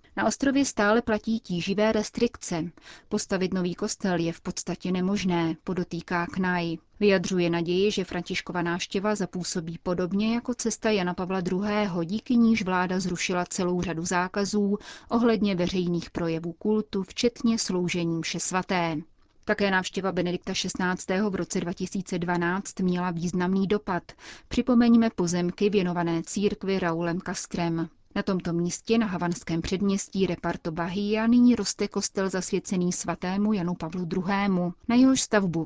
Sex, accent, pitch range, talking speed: female, native, 175-205 Hz, 130 wpm